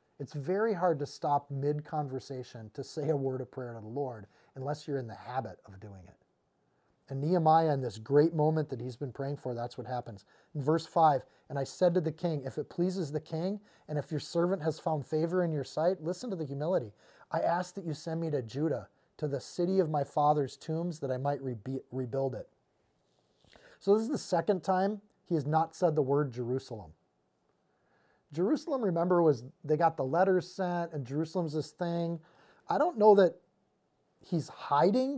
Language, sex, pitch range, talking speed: English, male, 140-180 Hz, 195 wpm